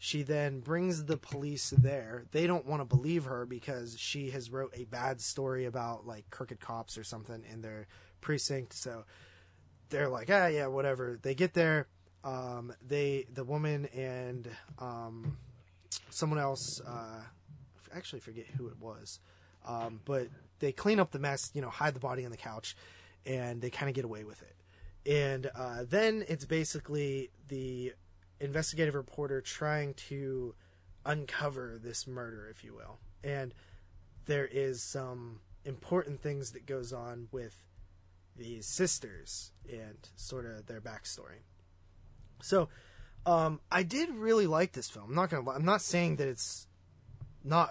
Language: English